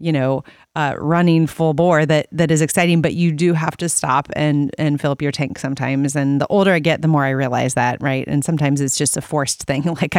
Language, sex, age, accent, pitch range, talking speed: English, female, 30-49, American, 150-190 Hz, 245 wpm